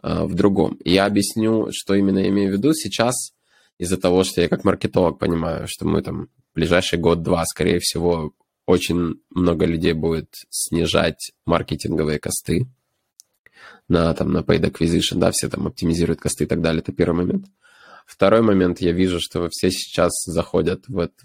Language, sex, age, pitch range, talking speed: Ukrainian, male, 20-39, 85-95 Hz, 165 wpm